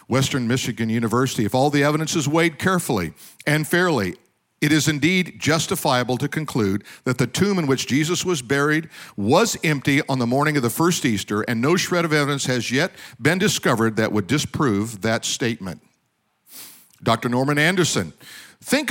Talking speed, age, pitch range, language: 170 wpm, 50-69, 125-180 Hz, English